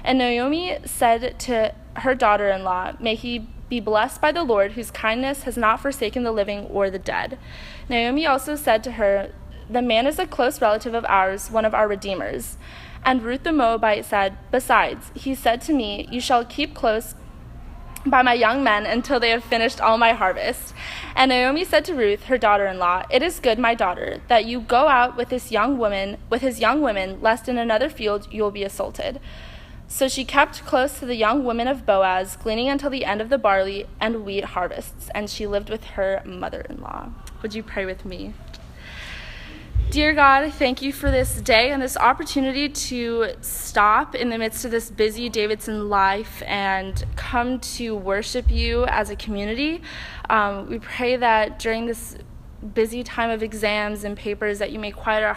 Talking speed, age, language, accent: 185 wpm, 20-39, English, American